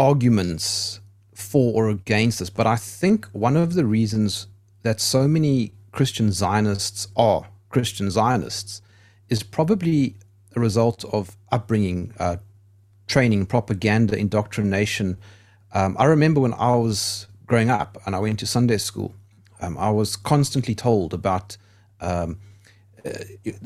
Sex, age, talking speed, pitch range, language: male, 40-59, 130 wpm, 100-120 Hz, English